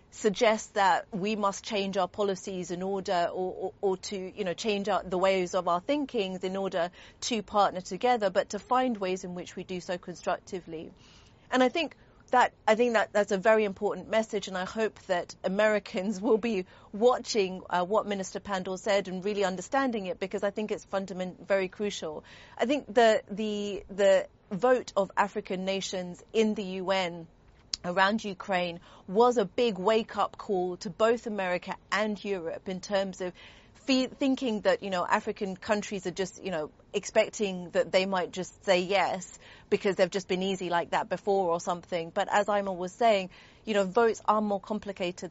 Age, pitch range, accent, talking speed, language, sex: 40-59, 185-215 Hz, British, 185 wpm, English, female